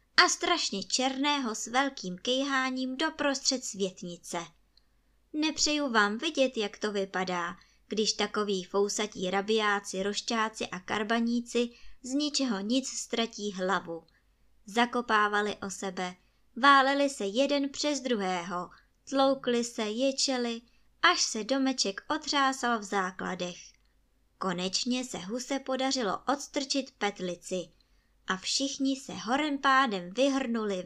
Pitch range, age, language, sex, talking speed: 190-270 Hz, 20-39, Czech, male, 105 wpm